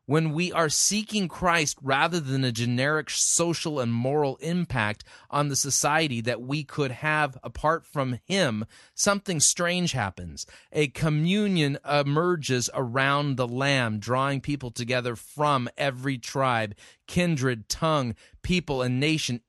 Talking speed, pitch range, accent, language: 130 wpm, 120-155 Hz, American, English